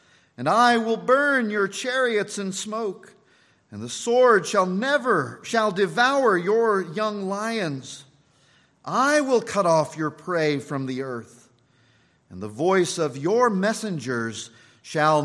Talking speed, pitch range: 135 wpm, 145-225 Hz